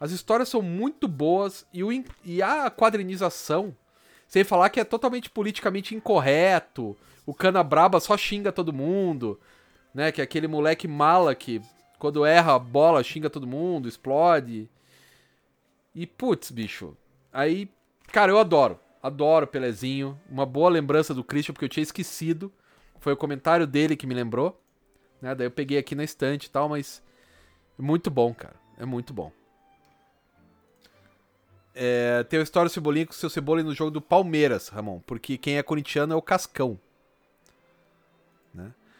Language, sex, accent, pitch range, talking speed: Portuguese, male, Brazilian, 130-180 Hz, 155 wpm